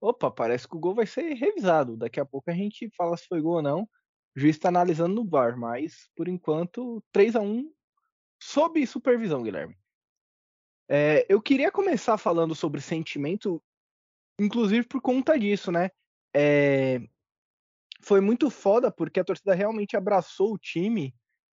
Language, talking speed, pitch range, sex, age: Portuguese, 155 wpm, 135-225 Hz, male, 20-39